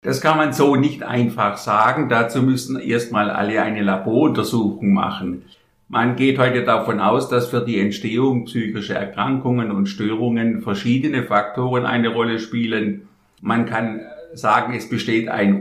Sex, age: male, 50-69